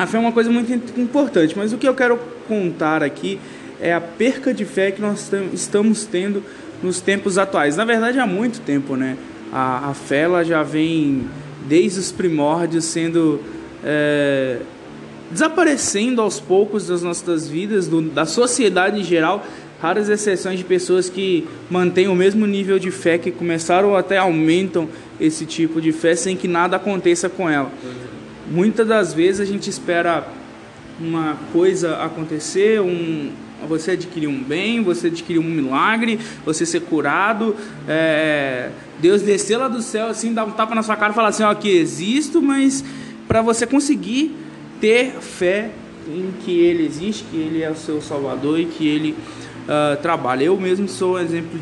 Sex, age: male, 20-39